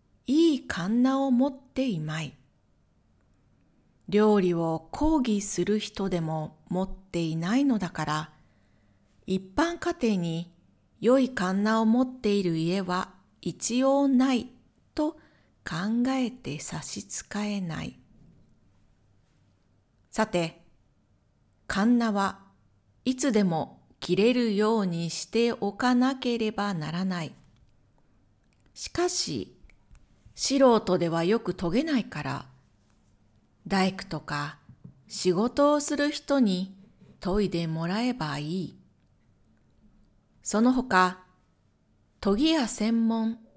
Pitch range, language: 165-245 Hz, Japanese